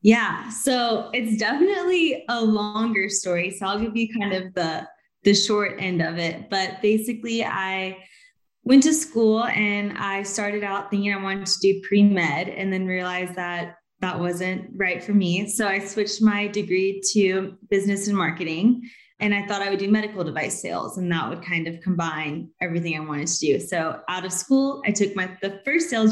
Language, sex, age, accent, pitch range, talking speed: English, female, 10-29, American, 180-215 Hz, 190 wpm